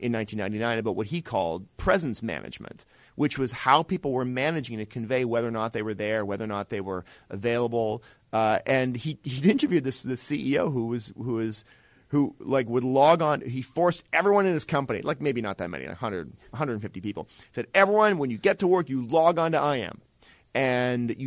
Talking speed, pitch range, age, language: 210 wpm, 110-145 Hz, 40-59, English